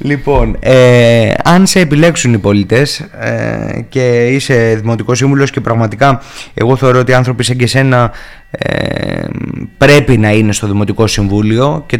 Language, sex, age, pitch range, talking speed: Greek, male, 20-39, 120-160 Hz, 140 wpm